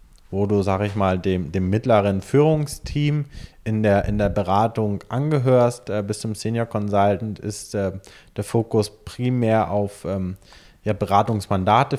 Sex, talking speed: male, 135 wpm